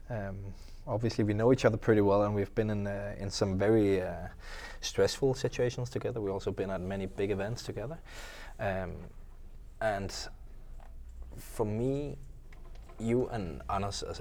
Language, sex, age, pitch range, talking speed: English, male, 20-39, 90-105 Hz, 150 wpm